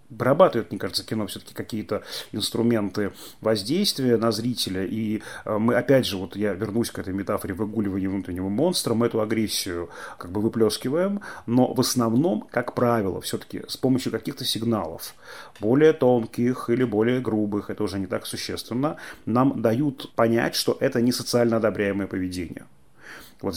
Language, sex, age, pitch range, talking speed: Russian, male, 30-49, 105-130 Hz, 150 wpm